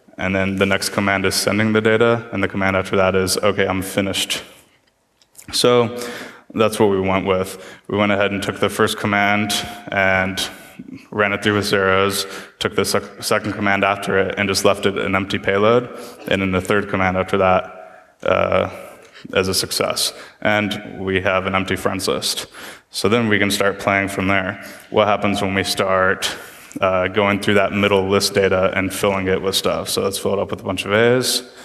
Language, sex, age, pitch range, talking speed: English, male, 20-39, 95-100 Hz, 195 wpm